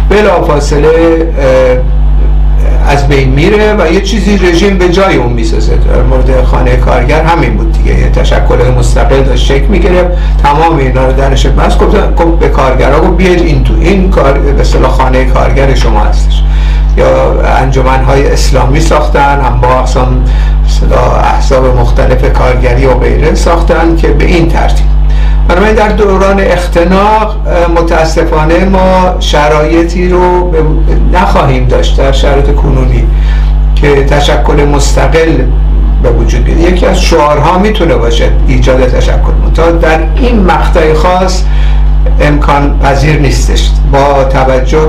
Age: 60-79